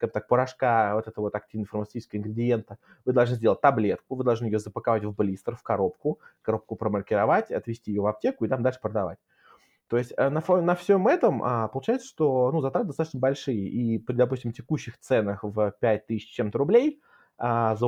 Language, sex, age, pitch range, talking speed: Russian, male, 20-39, 110-140 Hz, 180 wpm